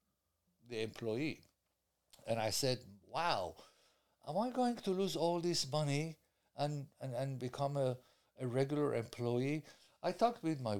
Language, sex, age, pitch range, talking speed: English, male, 60-79, 105-145 Hz, 145 wpm